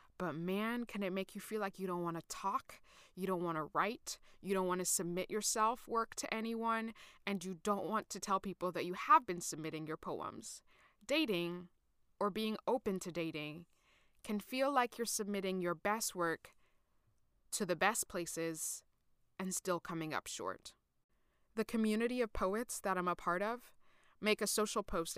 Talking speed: 185 wpm